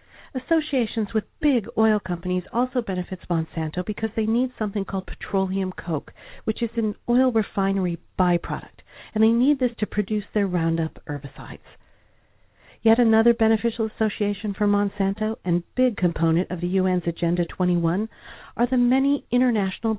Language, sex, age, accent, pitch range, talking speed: English, female, 50-69, American, 180-235 Hz, 145 wpm